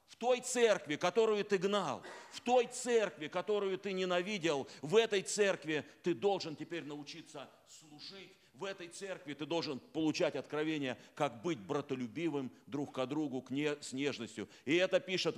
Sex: male